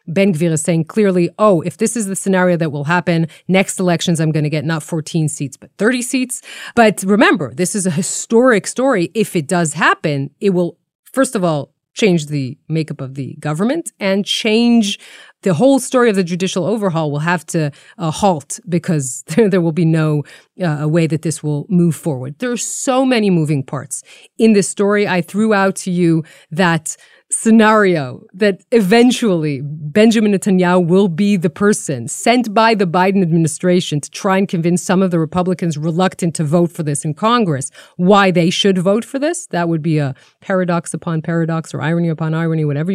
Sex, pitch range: female, 160-215 Hz